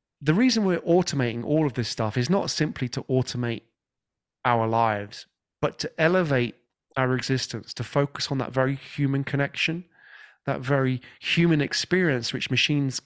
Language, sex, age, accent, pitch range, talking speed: English, male, 20-39, British, 115-145 Hz, 150 wpm